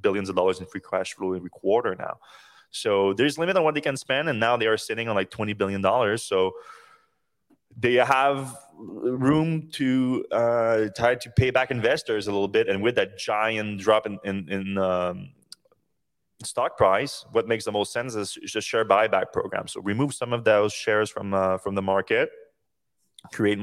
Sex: male